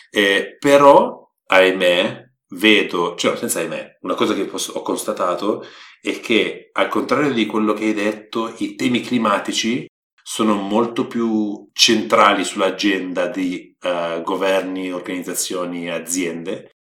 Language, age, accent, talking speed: Italian, 30-49, native, 115 wpm